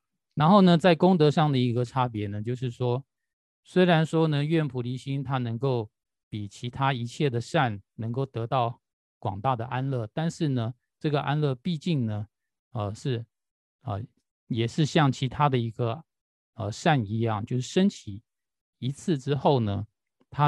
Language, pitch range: Chinese, 115-145 Hz